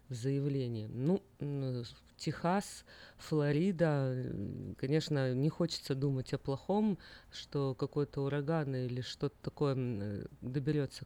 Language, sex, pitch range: Russian, female, 130-155 Hz